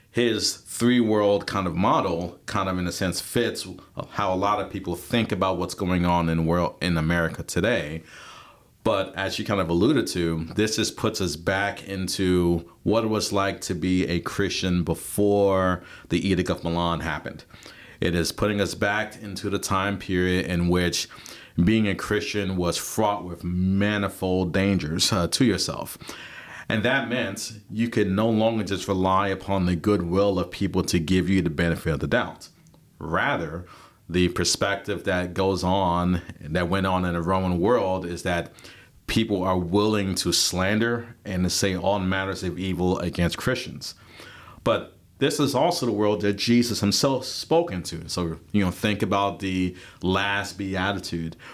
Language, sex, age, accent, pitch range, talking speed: English, male, 40-59, American, 90-105 Hz, 170 wpm